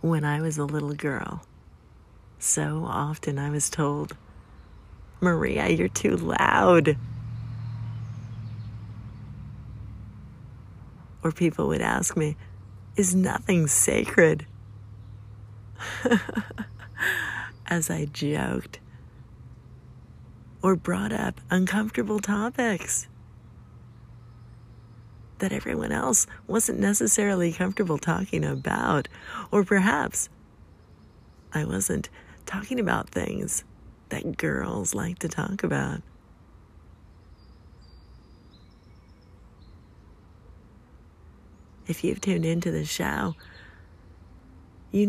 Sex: female